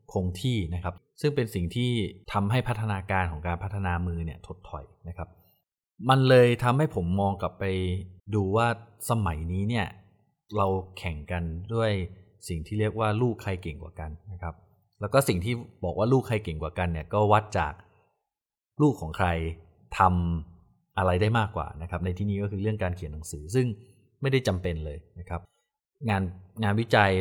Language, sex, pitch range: Thai, male, 90-110 Hz